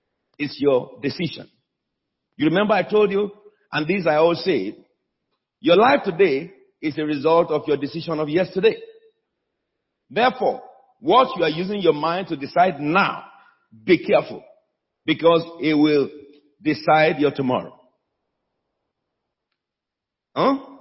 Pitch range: 160-255 Hz